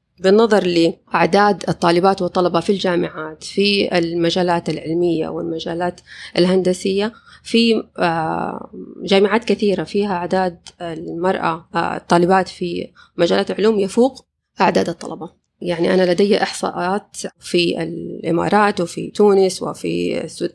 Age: 20-39